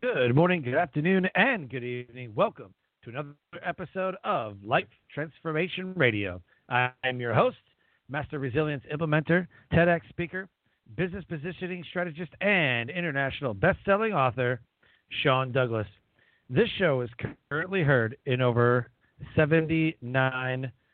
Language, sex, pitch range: English, male, 125-170 Hz